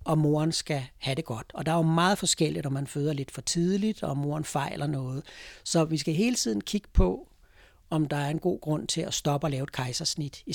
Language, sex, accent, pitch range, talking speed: Danish, male, native, 140-180 Hz, 245 wpm